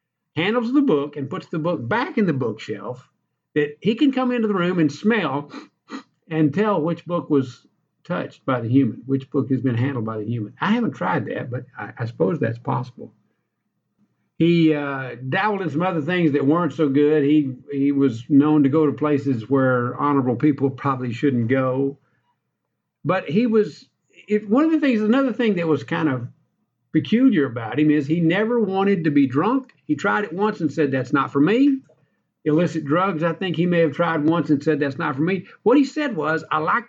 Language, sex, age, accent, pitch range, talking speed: English, male, 50-69, American, 135-175 Hz, 205 wpm